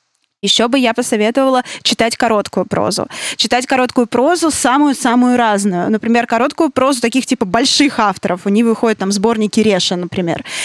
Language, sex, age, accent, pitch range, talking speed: Russian, female, 20-39, native, 220-265 Hz, 145 wpm